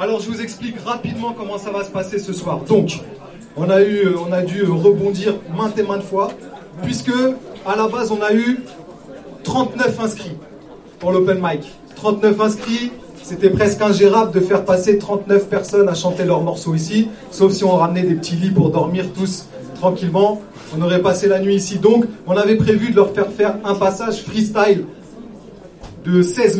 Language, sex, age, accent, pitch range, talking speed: French, male, 30-49, French, 175-215 Hz, 185 wpm